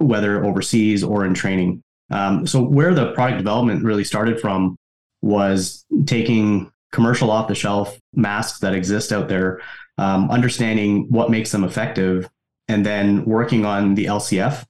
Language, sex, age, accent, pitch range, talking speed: English, male, 20-39, American, 95-115 Hz, 145 wpm